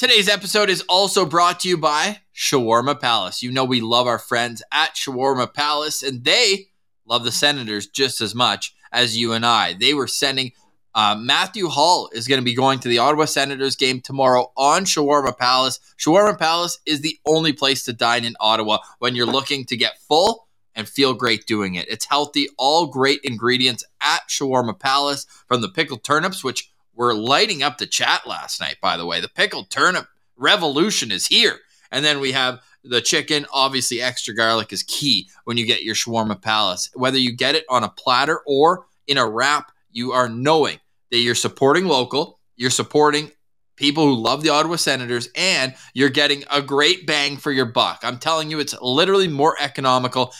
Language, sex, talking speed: English, male, 190 wpm